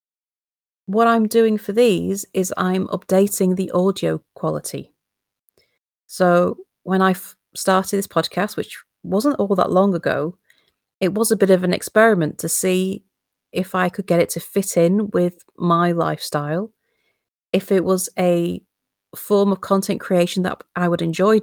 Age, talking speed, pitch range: 30-49, 155 wpm, 170-200 Hz